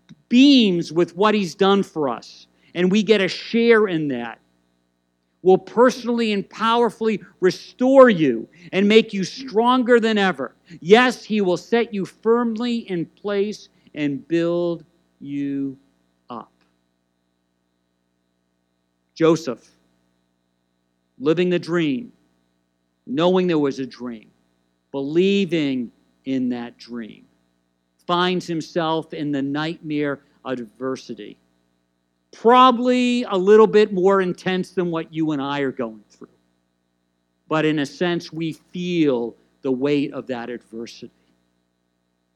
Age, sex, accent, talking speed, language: 50-69, male, American, 120 wpm, English